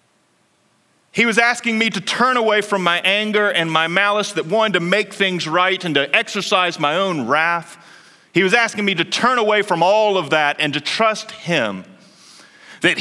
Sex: male